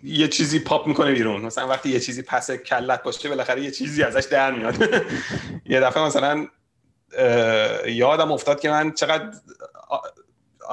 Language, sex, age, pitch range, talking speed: Persian, male, 30-49, 120-165 Hz, 150 wpm